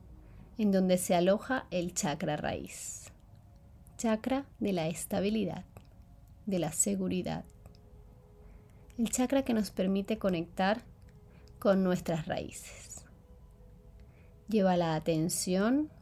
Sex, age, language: female, 30-49, Spanish